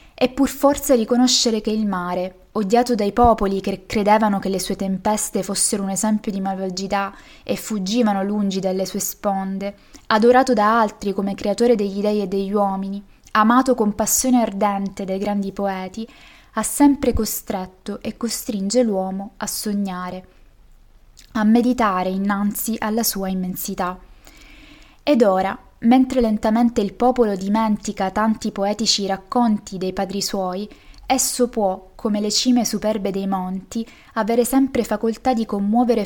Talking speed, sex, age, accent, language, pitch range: 140 wpm, female, 20-39, native, Italian, 195-230 Hz